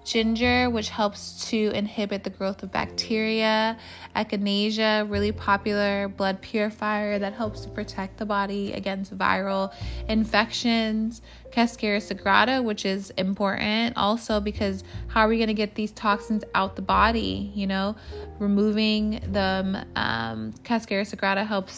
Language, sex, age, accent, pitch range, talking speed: English, female, 20-39, American, 195-215 Hz, 135 wpm